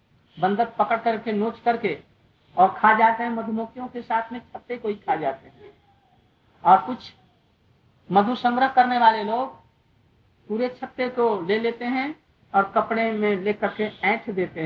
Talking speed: 160 wpm